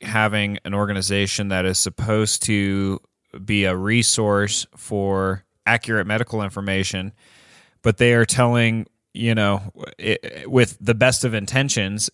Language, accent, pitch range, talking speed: English, American, 95-115 Hz, 130 wpm